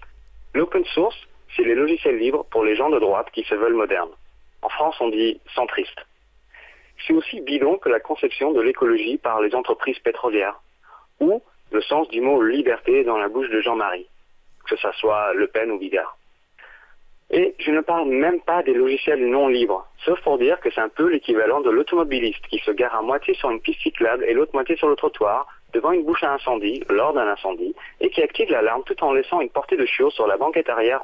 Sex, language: male, French